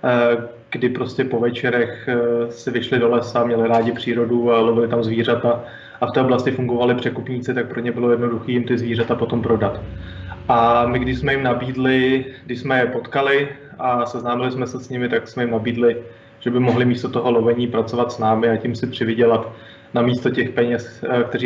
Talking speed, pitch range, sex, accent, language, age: 195 wpm, 115-130 Hz, male, native, Czech, 20-39